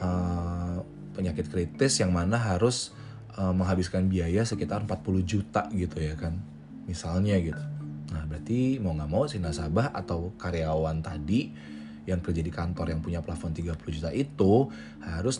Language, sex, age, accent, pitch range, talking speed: Indonesian, male, 20-39, native, 85-115 Hz, 150 wpm